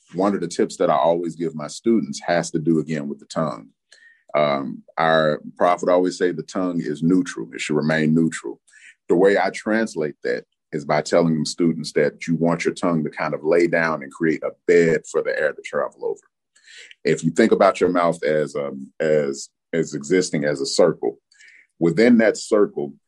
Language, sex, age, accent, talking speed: English, male, 30-49, American, 195 wpm